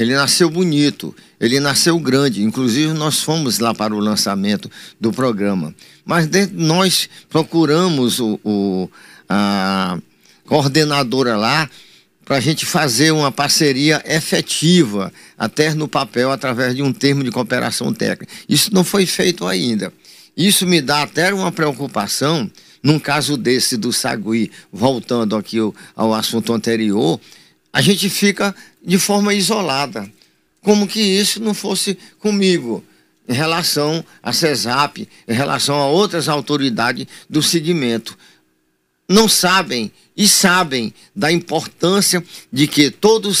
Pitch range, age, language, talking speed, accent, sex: 120-175 Hz, 50-69, Portuguese, 125 wpm, Brazilian, male